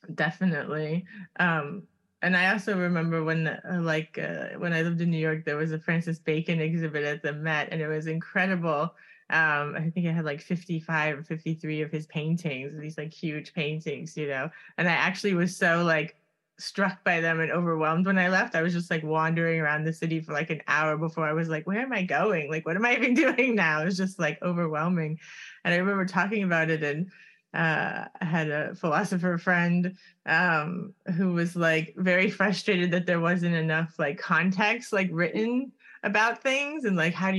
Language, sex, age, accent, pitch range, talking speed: English, female, 20-39, American, 160-195 Hz, 200 wpm